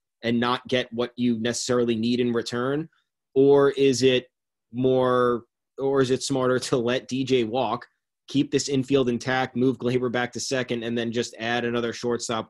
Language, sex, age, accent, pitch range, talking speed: English, male, 20-39, American, 110-125 Hz, 175 wpm